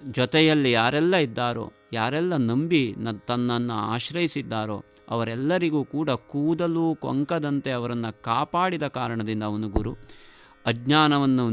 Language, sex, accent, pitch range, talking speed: Kannada, male, native, 110-155 Hz, 95 wpm